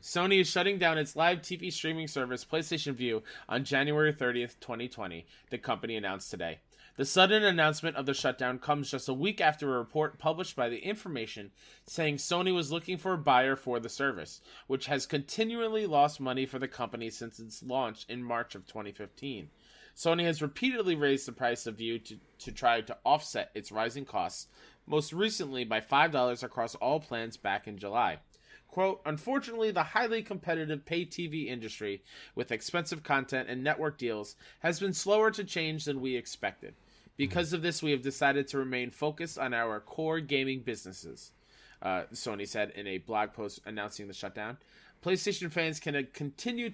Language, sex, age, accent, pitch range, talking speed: English, male, 20-39, American, 120-165 Hz, 175 wpm